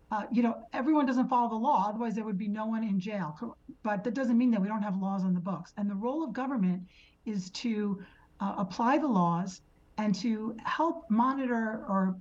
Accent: American